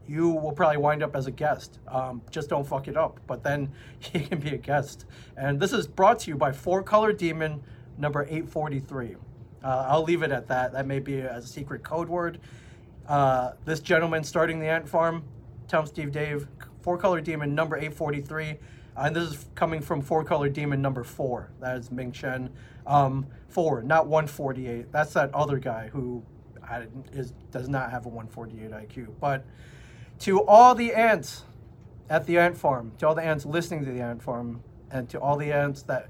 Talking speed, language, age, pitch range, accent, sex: 195 wpm, English, 30-49, 125-155 Hz, American, male